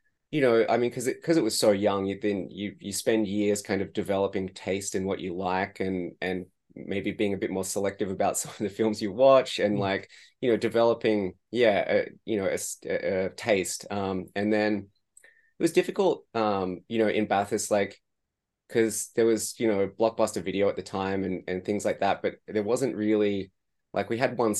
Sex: male